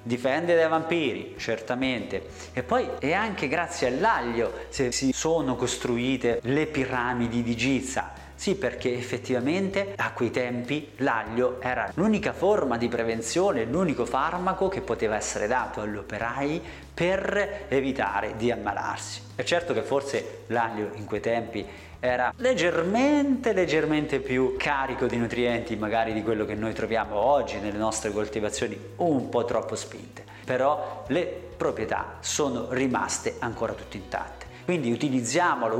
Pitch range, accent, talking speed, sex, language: 115-165 Hz, native, 135 wpm, male, Italian